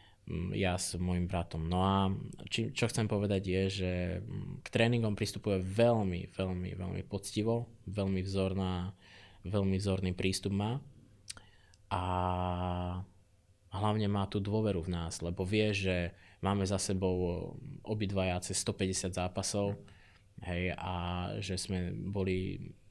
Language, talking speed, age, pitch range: Slovak, 120 wpm, 20-39, 90-105 Hz